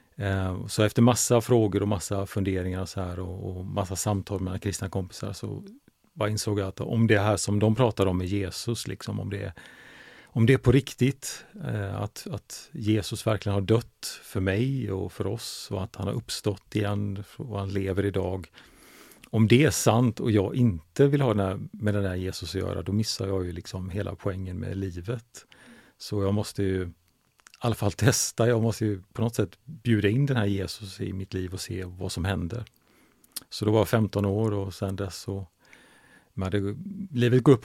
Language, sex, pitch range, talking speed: Swedish, male, 95-115 Hz, 200 wpm